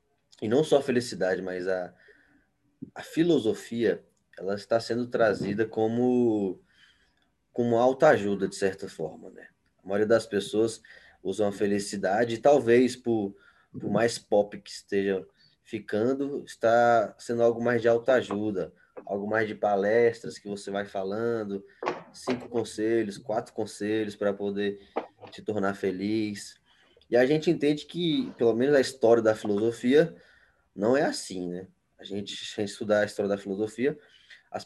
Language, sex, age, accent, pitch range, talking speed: Portuguese, male, 20-39, Brazilian, 100-125 Hz, 150 wpm